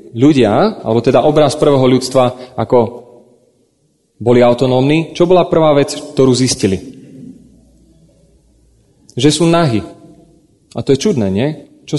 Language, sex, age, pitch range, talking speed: Slovak, male, 30-49, 130-165 Hz, 120 wpm